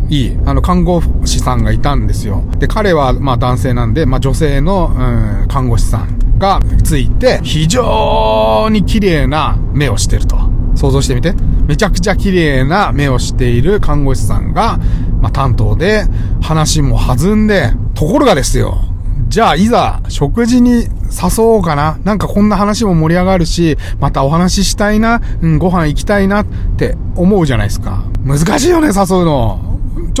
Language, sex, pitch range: Japanese, male, 110-185 Hz